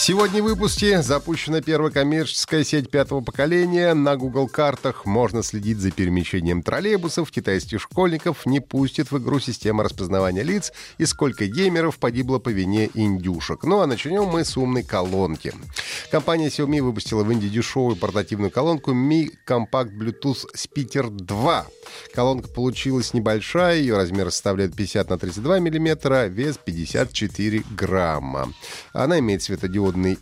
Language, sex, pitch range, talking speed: Russian, male, 100-160 Hz, 135 wpm